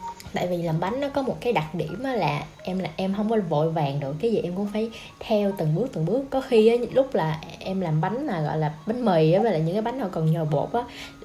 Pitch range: 165-230 Hz